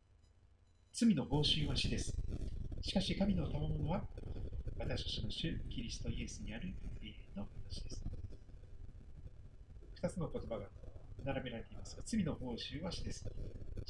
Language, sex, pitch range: Japanese, male, 90-140 Hz